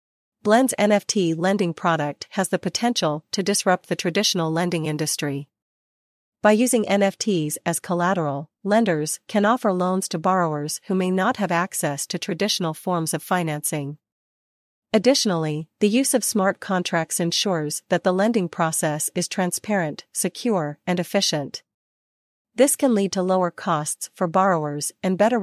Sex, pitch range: female, 160-200 Hz